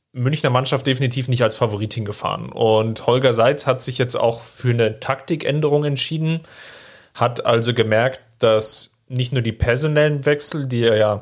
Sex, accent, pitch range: male, German, 115-135 Hz